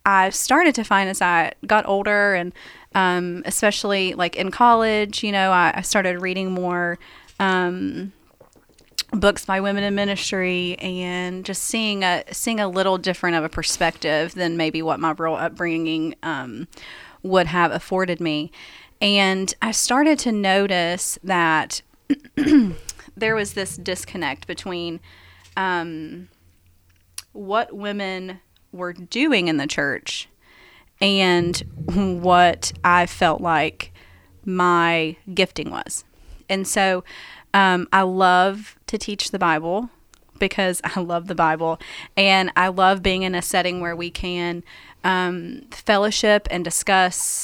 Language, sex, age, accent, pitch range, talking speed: English, female, 30-49, American, 170-195 Hz, 130 wpm